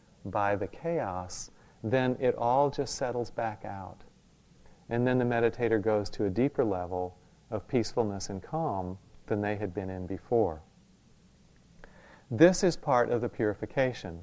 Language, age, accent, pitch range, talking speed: English, 40-59, American, 105-130 Hz, 150 wpm